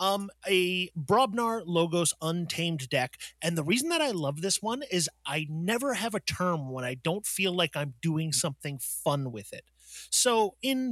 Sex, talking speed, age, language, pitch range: male, 180 wpm, 30-49, English, 135-175 Hz